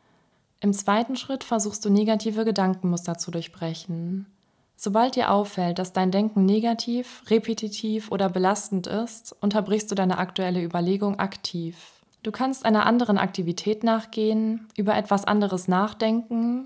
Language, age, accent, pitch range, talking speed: German, 20-39, German, 185-220 Hz, 130 wpm